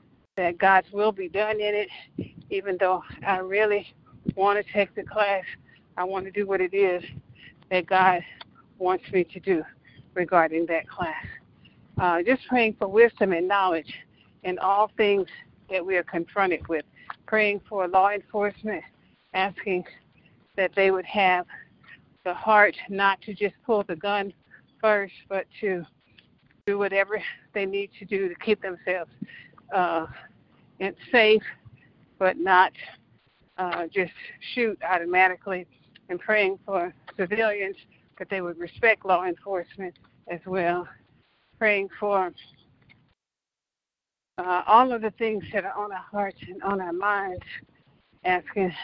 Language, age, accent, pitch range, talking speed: English, 50-69, American, 175-205 Hz, 140 wpm